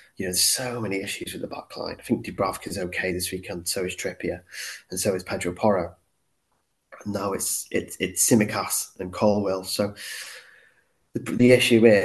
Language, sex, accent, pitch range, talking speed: English, male, British, 95-115 Hz, 185 wpm